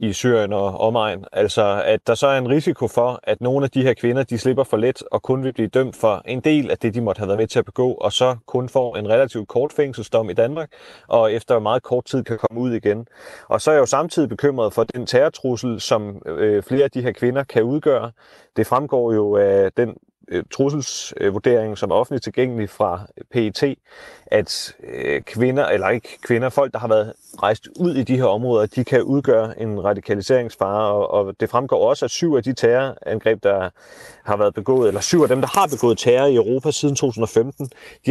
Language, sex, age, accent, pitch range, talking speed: Danish, male, 30-49, native, 110-140 Hz, 215 wpm